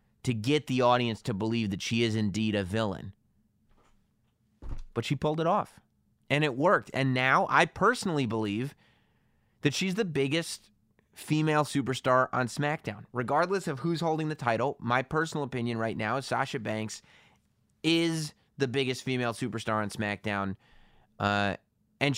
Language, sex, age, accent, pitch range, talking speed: English, male, 30-49, American, 110-155 Hz, 150 wpm